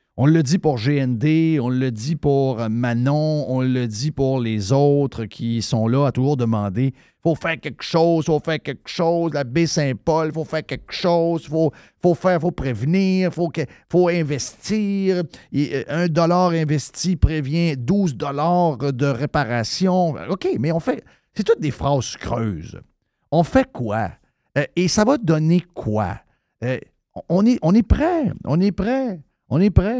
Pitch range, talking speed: 125-170 Hz, 175 wpm